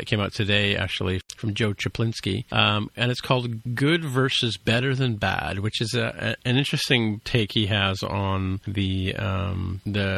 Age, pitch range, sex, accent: 40-59, 95-115 Hz, male, American